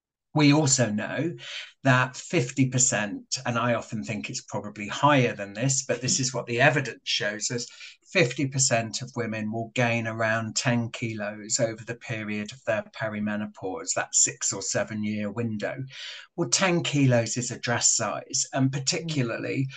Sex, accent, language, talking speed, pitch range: male, British, English, 160 wpm, 115-135 Hz